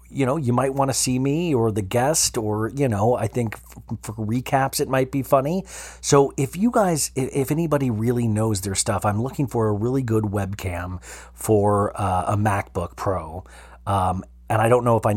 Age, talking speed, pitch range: 40-59, 200 wpm, 100-120 Hz